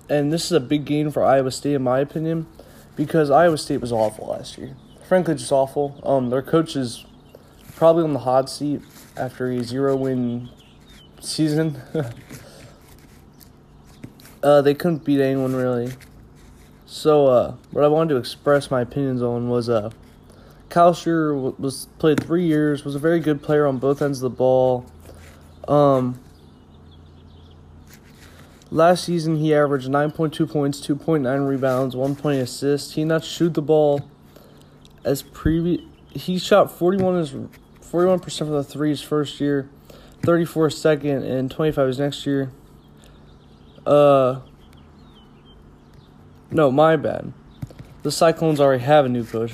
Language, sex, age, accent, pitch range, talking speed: English, male, 20-39, American, 115-150 Hz, 155 wpm